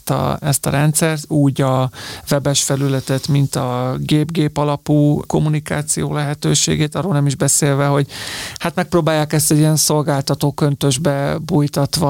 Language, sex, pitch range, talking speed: Hungarian, male, 135-155 Hz, 130 wpm